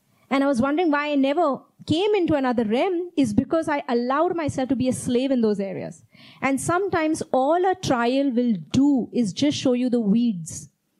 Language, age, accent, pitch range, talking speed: English, 30-49, Indian, 220-285 Hz, 195 wpm